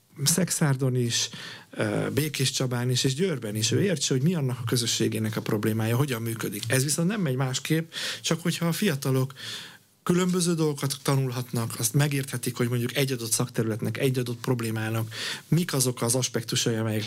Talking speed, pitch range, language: 160 wpm, 110-135 Hz, Hungarian